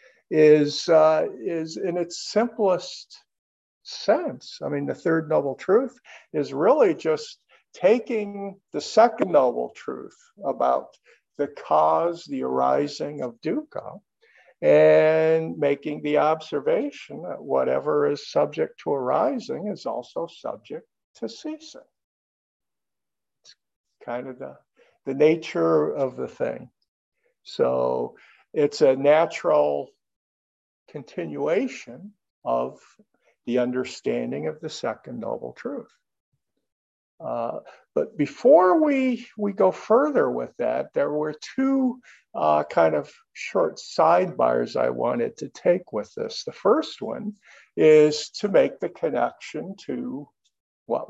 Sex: male